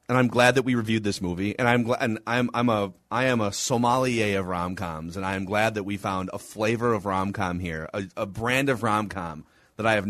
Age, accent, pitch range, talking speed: 30-49, American, 100-165 Hz, 245 wpm